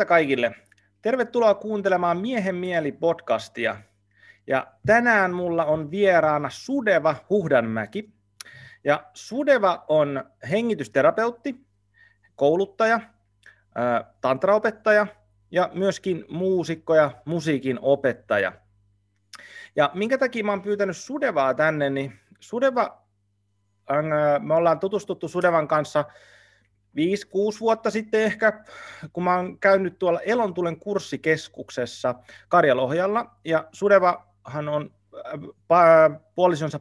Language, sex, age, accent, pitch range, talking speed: Finnish, male, 30-49, native, 125-195 Hz, 90 wpm